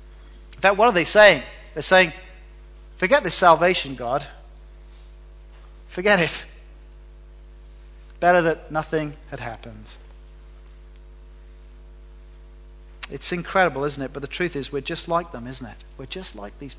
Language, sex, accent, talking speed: English, male, British, 130 wpm